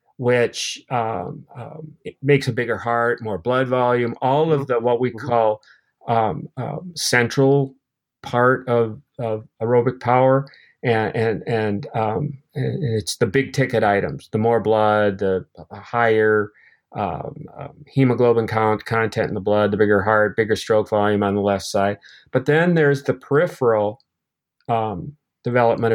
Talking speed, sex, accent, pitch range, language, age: 150 wpm, male, American, 105-125 Hz, English, 40-59